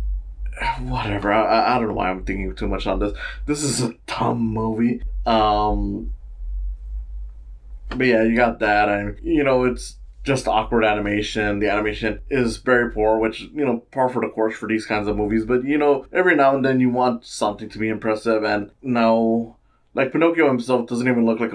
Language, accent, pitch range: English, American, 105-120 Hz